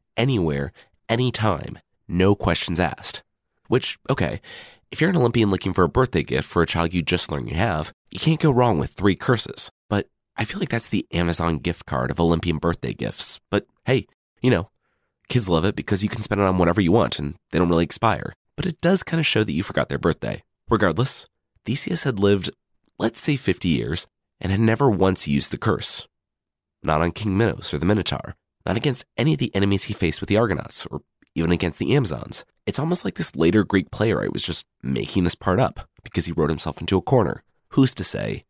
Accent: American